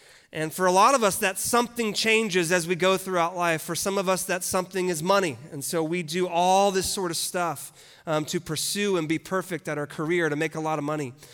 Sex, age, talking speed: male, 30-49, 245 wpm